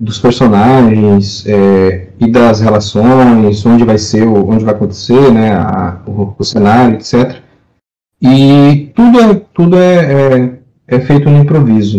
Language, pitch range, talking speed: Portuguese, 110-140 Hz, 140 wpm